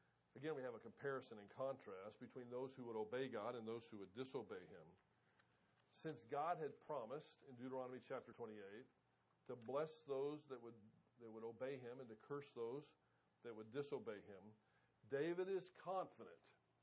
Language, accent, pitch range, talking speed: English, American, 120-180 Hz, 170 wpm